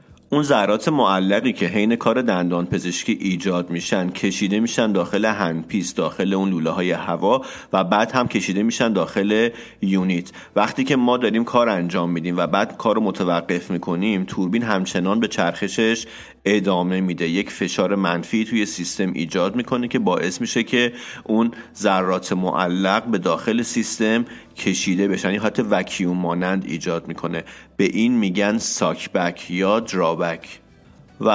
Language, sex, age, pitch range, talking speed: Persian, male, 30-49, 85-110 Hz, 145 wpm